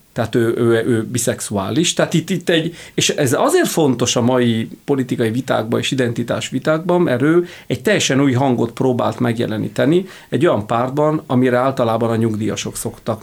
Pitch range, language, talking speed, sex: 120-155 Hz, Hungarian, 165 wpm, male